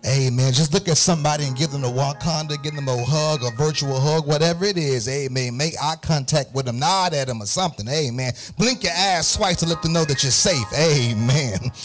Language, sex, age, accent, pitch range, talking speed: English, male, 30-49, American, 130-170 Hz, 225 wpm